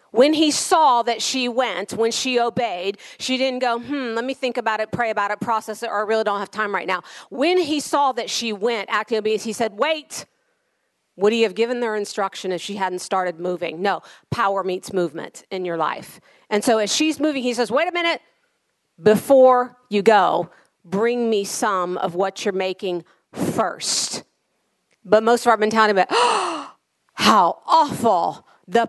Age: 40-59